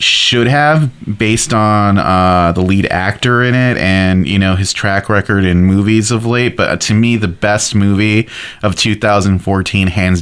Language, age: English, 20-39